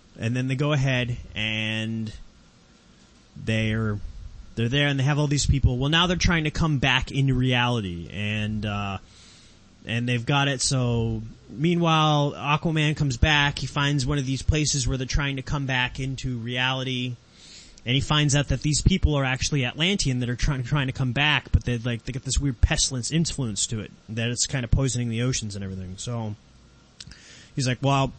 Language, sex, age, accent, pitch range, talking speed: English, male, 30-49, American, 115-145 Hz, 190 wpm